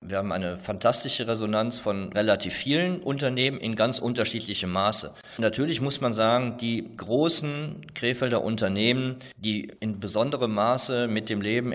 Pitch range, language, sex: 110-130 Hz, German, male